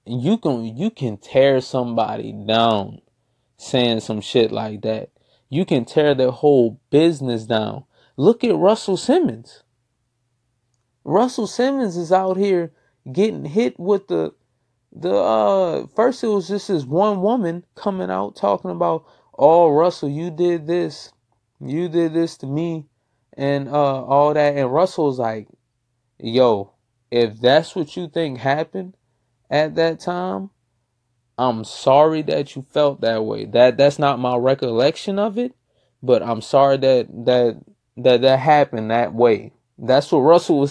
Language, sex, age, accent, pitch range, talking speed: English, male, 20-39, American, 120-165 Hz, 150 wpm